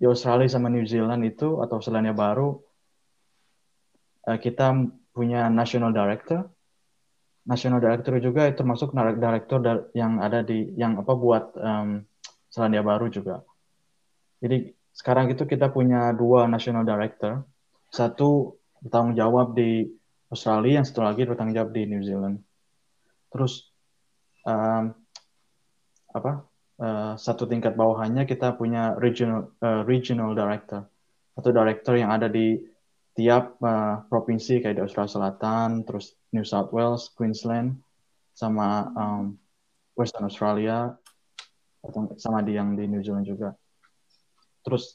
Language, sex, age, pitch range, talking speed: Indonesian, male, 20-39, 110-125 Hz, 120 wpm